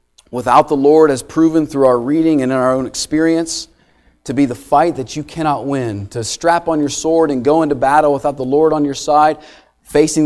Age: 40-59